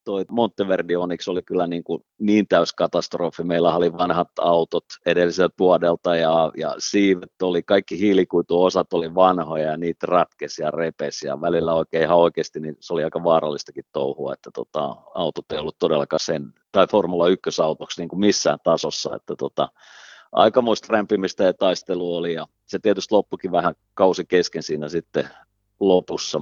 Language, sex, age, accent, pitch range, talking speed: Finnish, male, 50-69, native, 80-95 Hz, 155 wpm